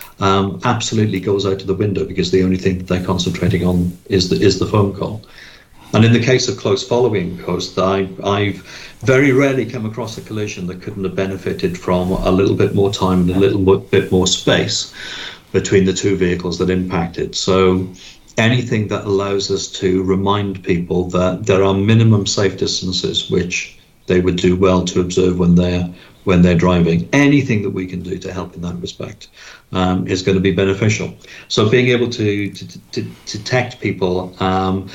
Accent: British